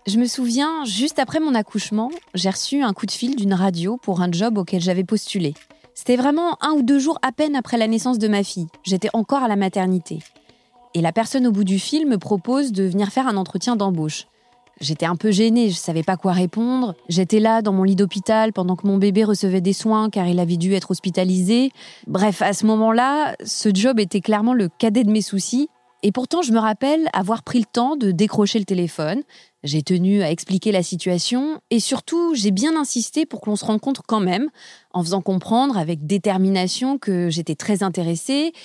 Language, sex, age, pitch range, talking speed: French, female, 20-39, 190-245 Hz, 210 wpm